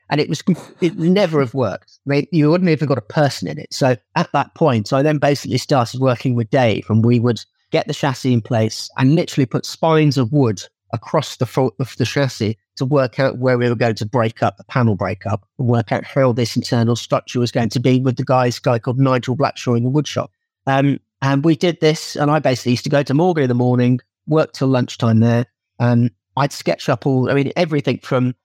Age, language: 40-59, English